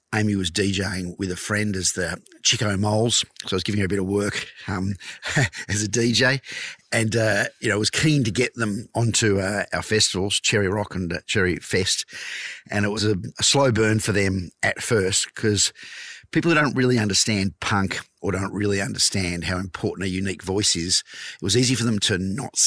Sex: male